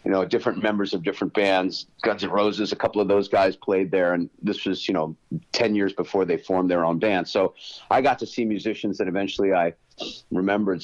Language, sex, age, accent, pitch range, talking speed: English, male, 50-69, American, 95-105 Hz, 220 wpm